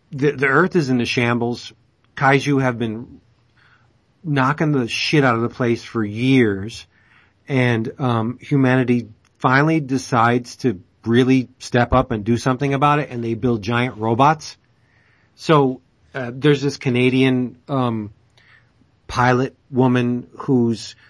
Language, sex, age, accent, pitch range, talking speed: English, male, 40-59, American, 115-135 Hz, 135 wpm